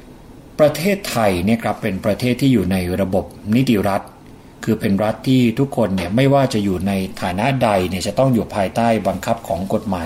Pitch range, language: 100-120 Hz, Thai